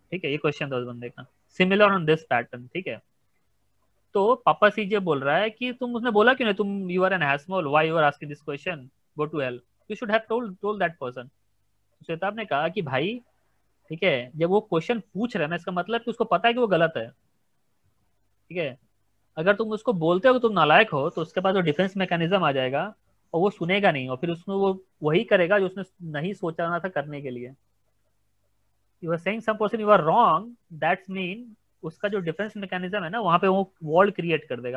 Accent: native